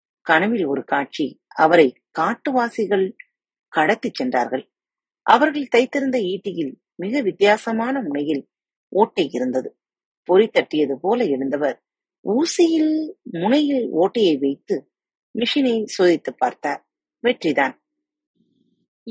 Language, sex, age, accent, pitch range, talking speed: Tamil, female, 30-49, native, 160-270 Hz, 85 wpm